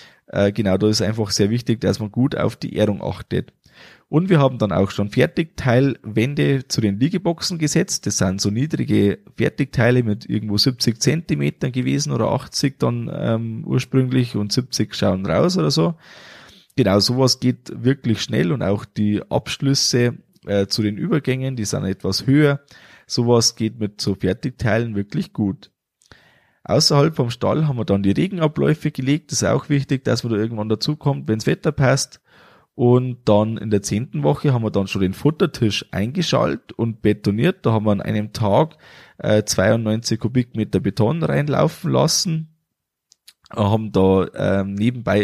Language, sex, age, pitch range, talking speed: German, male, 20-39, 100-135 Hz, 160 wpm